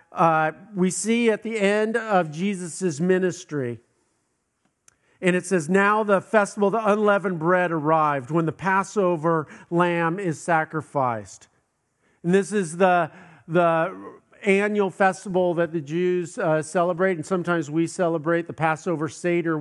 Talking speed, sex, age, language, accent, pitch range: 135 wpm, male, 50-69, English, American, 155-190 Hz